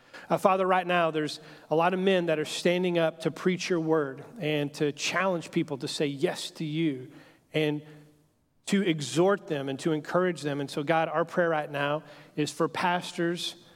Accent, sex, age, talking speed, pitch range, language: American, male, 40-59, 190 wpm, 145-175 Hz, English